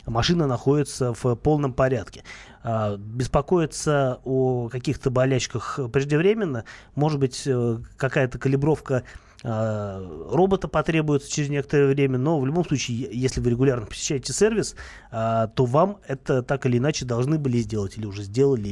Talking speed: 130 wpm